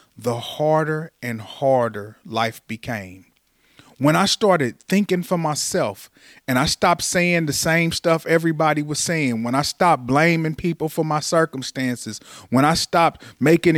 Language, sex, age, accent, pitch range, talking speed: English, male, 30-49, American, 140-180 Hz, 150 wpm